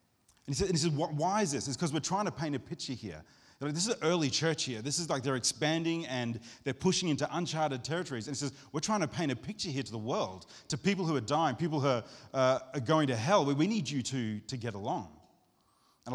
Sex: male